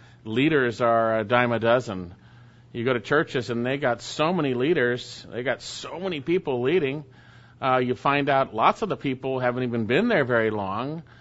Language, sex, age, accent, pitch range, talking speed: English, male, 40-59, American, 115-145 Hz, 195 wpm